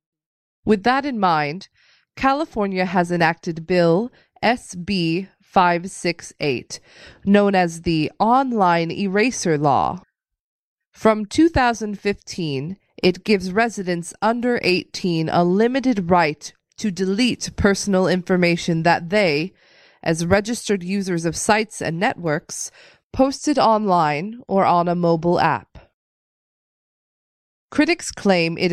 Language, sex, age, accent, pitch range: Chinese, female, 20-39, American, 170-220 Hz